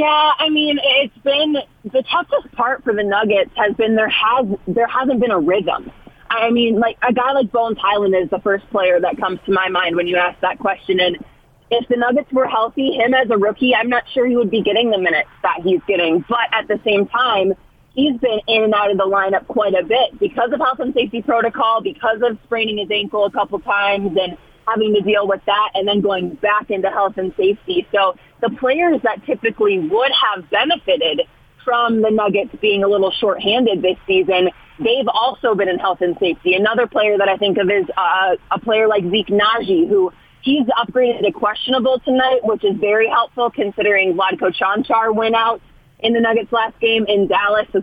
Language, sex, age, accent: English, female, 20-39, American